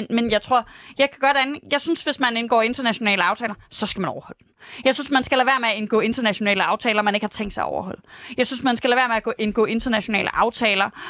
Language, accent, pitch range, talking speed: Danish, native, 215-270 Hz, 265 wpm